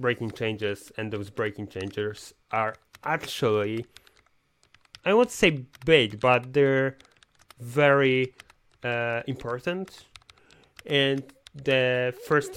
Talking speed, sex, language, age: 95 wpm, male, Polish, 30-49